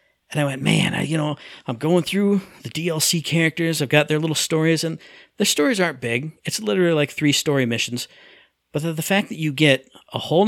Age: 50-69